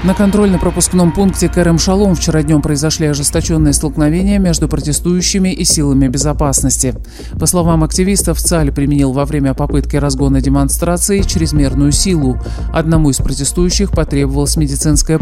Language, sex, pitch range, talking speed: Russian, male, 140-175 Hz, 125 wpm